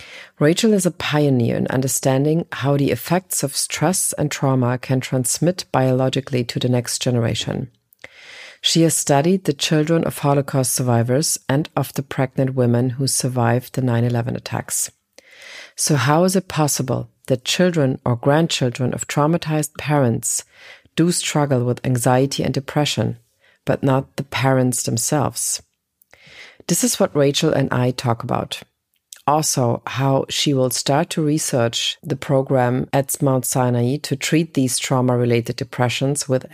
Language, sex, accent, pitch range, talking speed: English, female, German, 125-150 Hz, 145 wpm